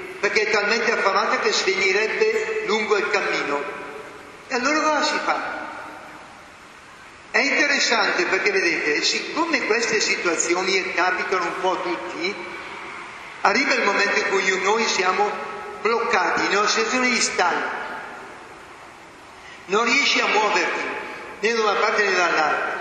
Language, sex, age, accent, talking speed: Italian, male, 50-69, native, 130 wpm